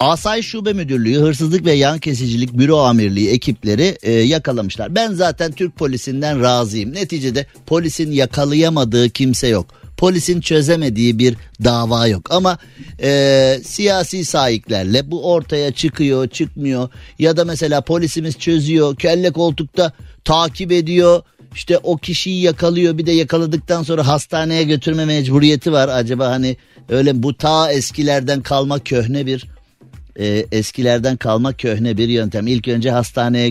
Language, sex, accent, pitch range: Turkish, male, native, 115-160 Hz